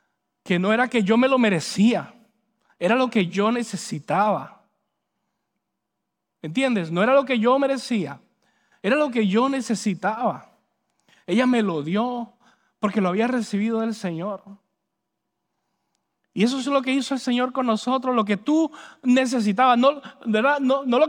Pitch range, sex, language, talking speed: 195-255 Hz, male, English, 155 wpm